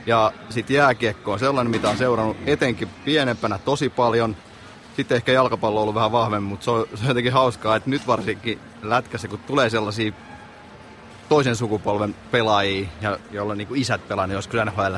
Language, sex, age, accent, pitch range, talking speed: Finnish, male, 30-49, native, 100-125 Hz, 170 wpm